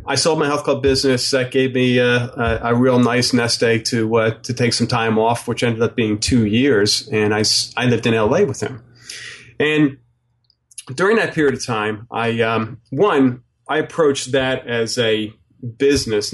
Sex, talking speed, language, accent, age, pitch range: male, 190 wpm, English, American, 30-49, 110-130 Hz